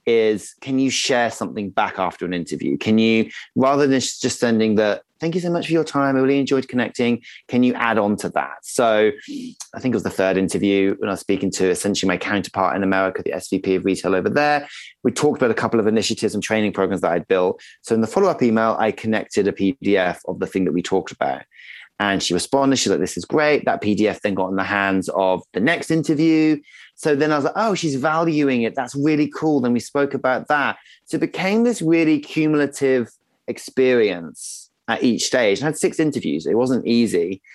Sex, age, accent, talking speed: male, 20-39, British, 220 wpm